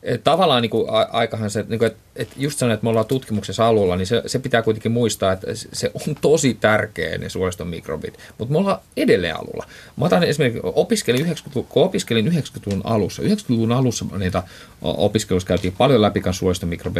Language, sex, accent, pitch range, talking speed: Finnish, male, native, 95-115 Hz, 155 wpm